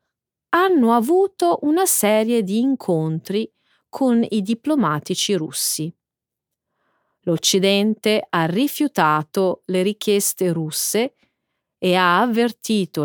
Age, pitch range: 30-49, 170-245 Hz